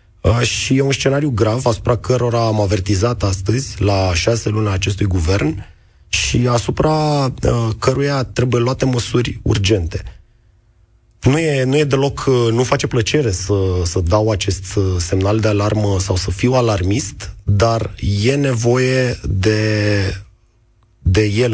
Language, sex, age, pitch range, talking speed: Romanian, male, 30-49, 100-115 Hz, 130 wpm